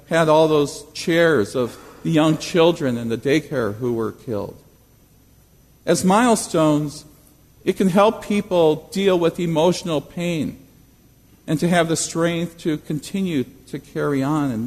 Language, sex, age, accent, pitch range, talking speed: English, male, 50-69, American, 145-195 Hz, 145 wpm